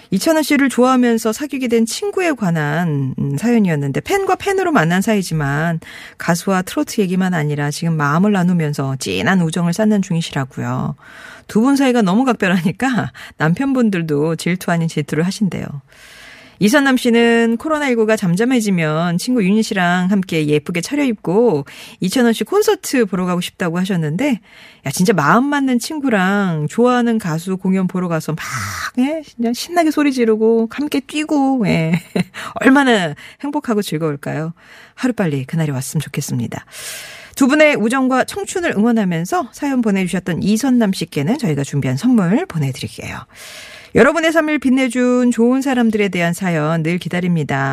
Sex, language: female, Korean